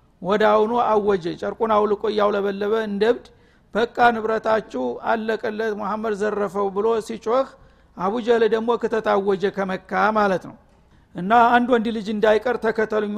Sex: male